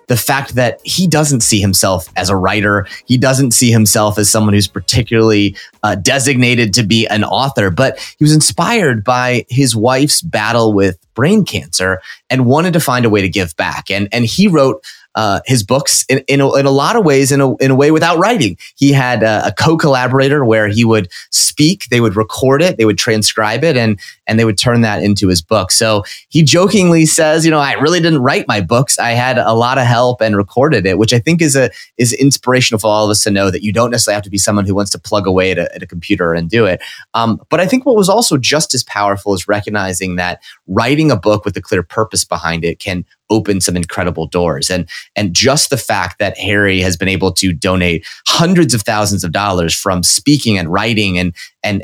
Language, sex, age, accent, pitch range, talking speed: English, male, 30-49, American, 100-135 Hz, 230 wpm